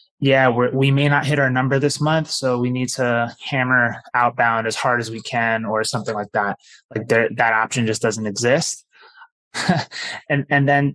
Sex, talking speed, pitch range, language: male, 190 wpm, 115-135 Hz, English